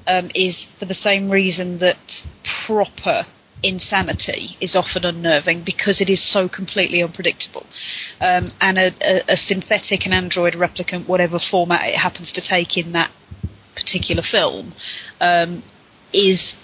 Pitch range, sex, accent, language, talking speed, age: 175-200 Hz, female, British, English, 140 wpm, 30-49